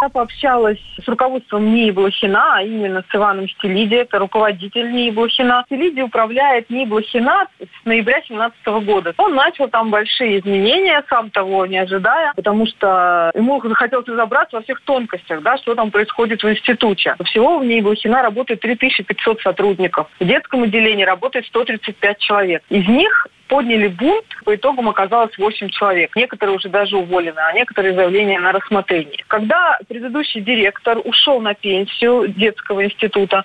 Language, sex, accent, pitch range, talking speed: Russian, female, native, 200-245 Hz, 150 wpm